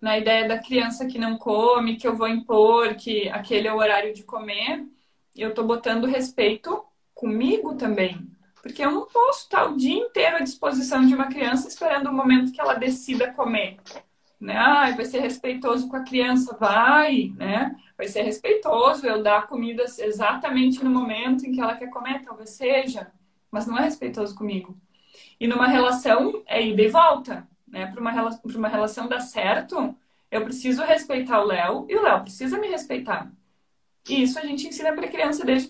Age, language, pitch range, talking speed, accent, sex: 20-39, Portuguese, 220-275 Hz, 185 wpm, Brazilian, female